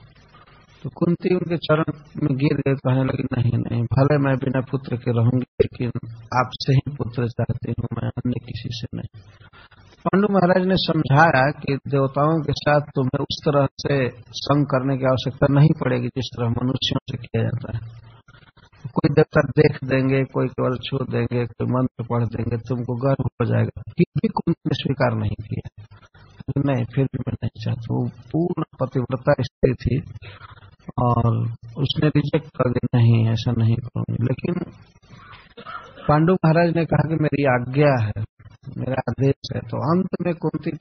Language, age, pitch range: Hindi, 50-69, 120-150 Hz